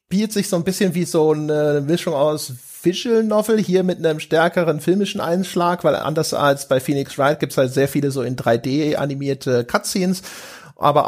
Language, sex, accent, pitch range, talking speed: German, male, German, 140-180 Hz, 190 wpm